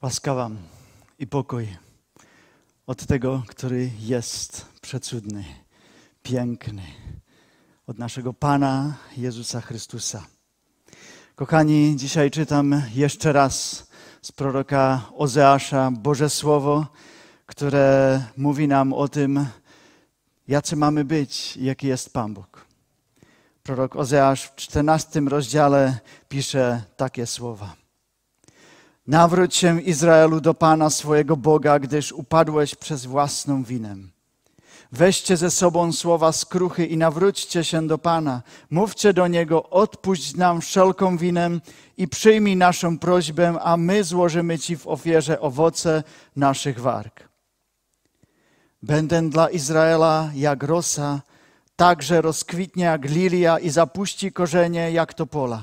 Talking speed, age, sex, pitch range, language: 110 wpm, 40-59, male, 130-165 Hz, Czech